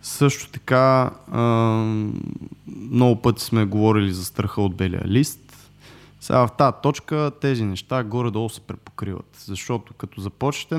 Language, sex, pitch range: Bulgarian, male, 100-125 Hz